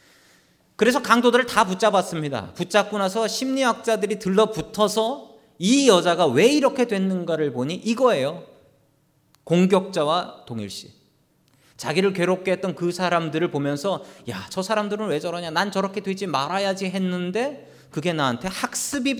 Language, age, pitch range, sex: Korean, 40-59, 140-215 Hz, male